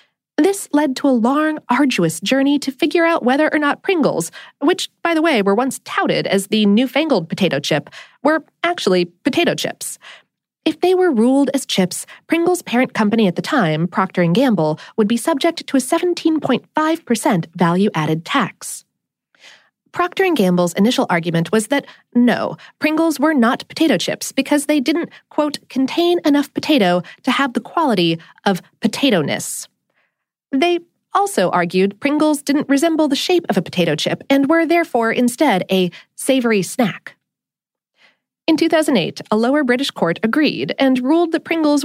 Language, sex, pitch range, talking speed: English, female, 200-310 Hz, 155 wpm